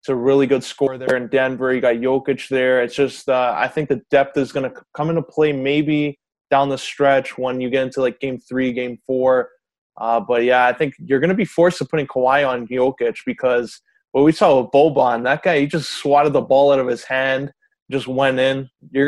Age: 20-39